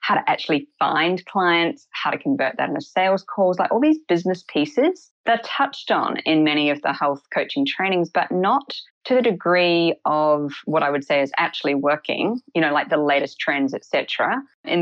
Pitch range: 150-195 Hz